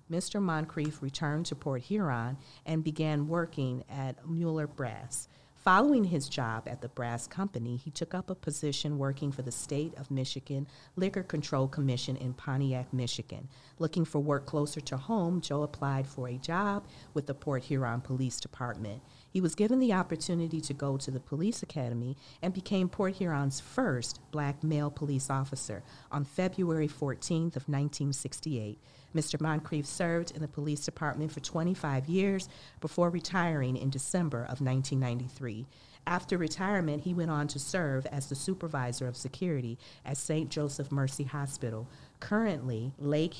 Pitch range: 130-165 Hz